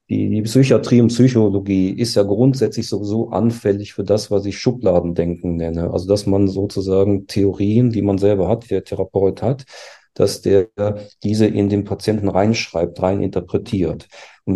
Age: 40-59